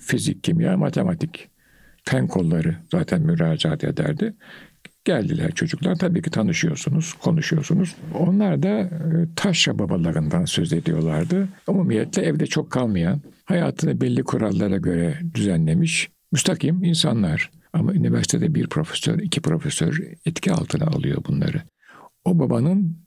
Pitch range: 155-175 Hz